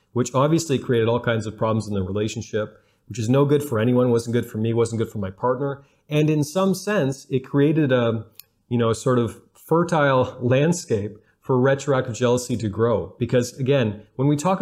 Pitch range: 110-140 Hz